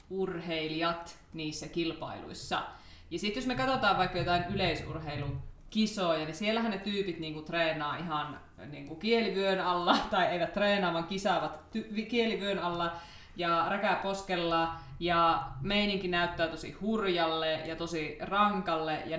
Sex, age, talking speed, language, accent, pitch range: female, 20-39, 120 wpm, Finnish, native, 165-200 Hz